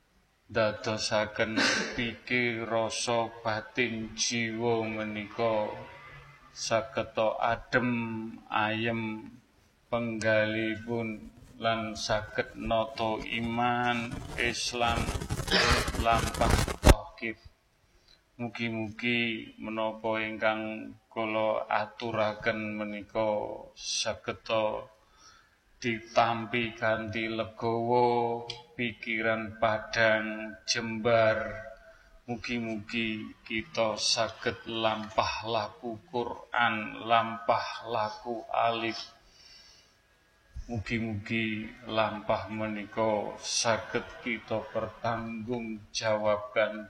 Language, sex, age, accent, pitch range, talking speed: Indonesian, male, 30-49, native, 105-115 Hz, 60 wpm